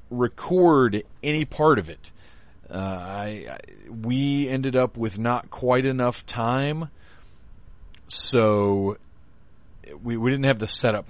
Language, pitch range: English, 100-150 Hz